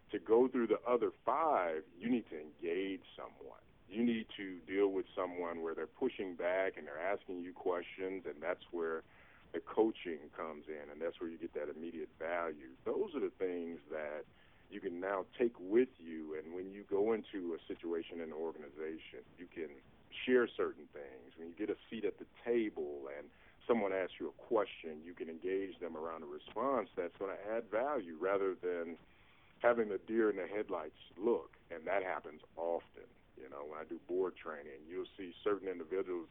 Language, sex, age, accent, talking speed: English, male, 40-59, American, 195 wpm